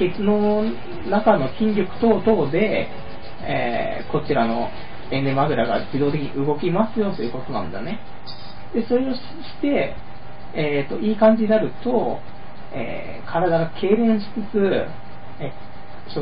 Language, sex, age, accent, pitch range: Japanese, male, 40-59, native, 120-175 Hz